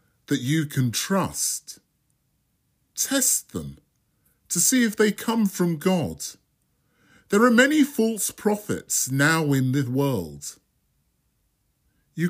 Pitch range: 135-205 Hz